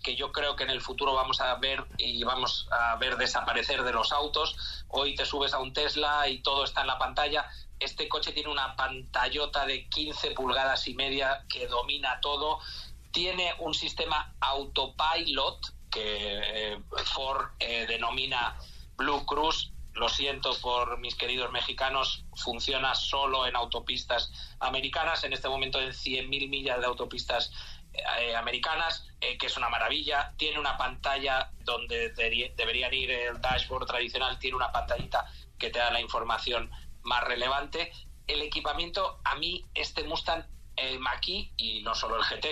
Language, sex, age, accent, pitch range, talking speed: Spanish, male, 40-59, Spanish, 120-150 Hz, 160 wpm